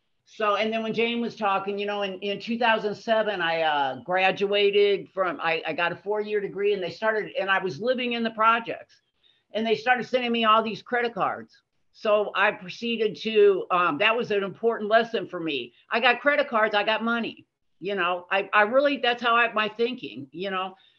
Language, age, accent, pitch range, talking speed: English, 50-69, American, 185-230 Hz, 205 wpm